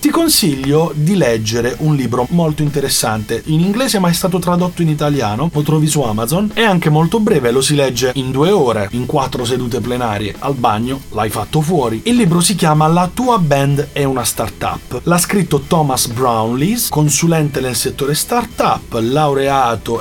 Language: Italian